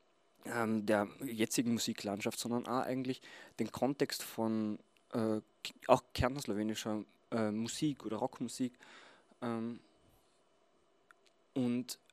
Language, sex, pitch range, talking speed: German, male, 110-130 Hz, 90 wpm